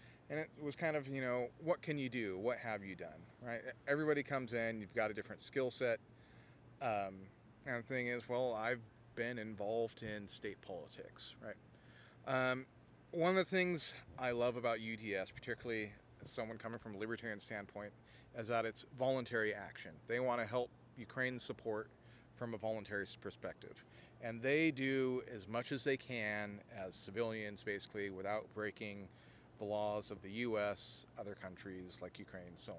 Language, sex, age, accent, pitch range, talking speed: English, male, 30-49, American, 105-130 Hz, 165 wpm